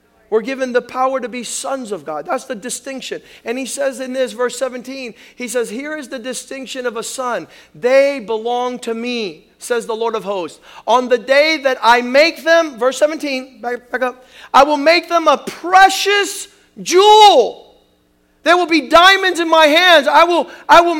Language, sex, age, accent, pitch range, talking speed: English, male, 50-69, American, 235-335 Hz, 185 wpm